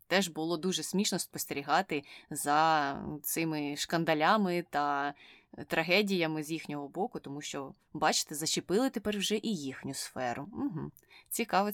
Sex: female